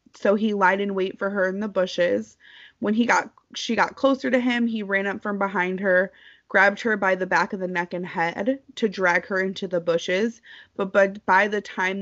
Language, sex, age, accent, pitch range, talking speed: English, female, 20-39, American, 185-240 Hz, 225 wpm